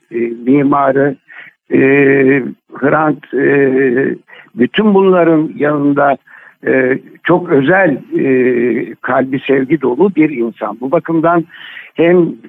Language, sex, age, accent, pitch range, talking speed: Turkish, male, 60-79, native, 130-165 Hz, 90 wpm